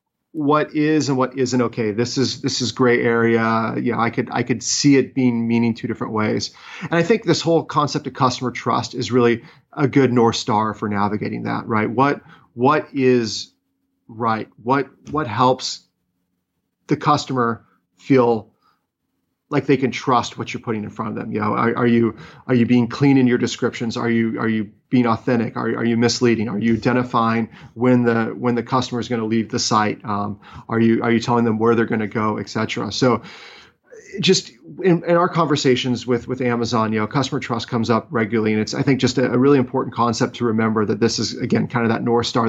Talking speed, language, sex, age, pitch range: 210 wpm, English, male, 40-59, 115-130 Hz